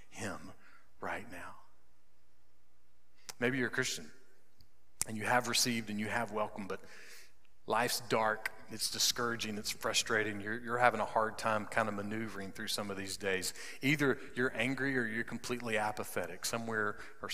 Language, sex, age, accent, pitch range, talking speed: English, male, 40-59, American, 110-135 Hz, 155 wpm